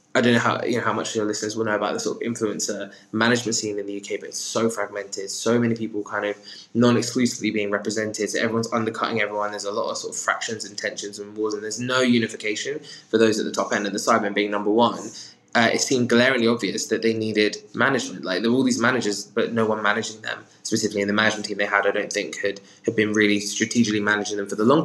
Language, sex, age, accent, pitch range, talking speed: English, male, 20-39, British, 105-115 Hz, 260 wpm